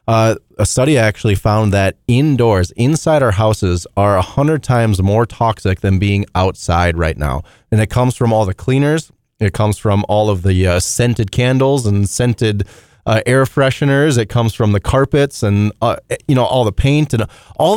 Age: 20-39